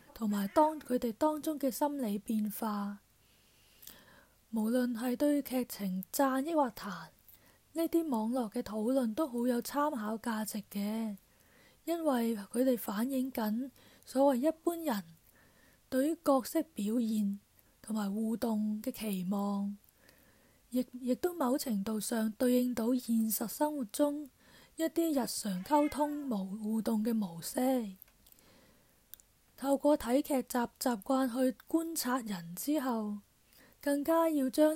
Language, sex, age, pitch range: Chinese, female, 20-39, 220-280 Hz